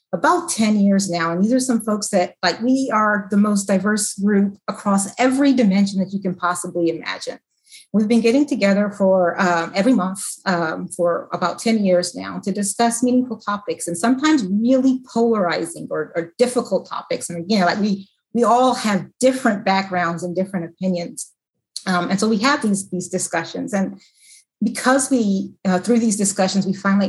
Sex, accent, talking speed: female, American, 180 wpm